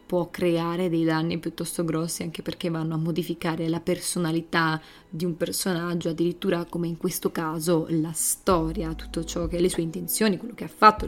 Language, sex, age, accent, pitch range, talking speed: Italian, female, 20-39, native, 170-205 Hz, 180 wpm